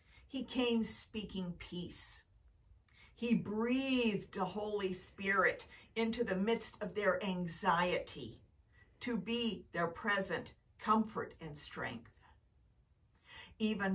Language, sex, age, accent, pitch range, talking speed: English, female, 50-69, American, 180-245 Hz, 100 wpm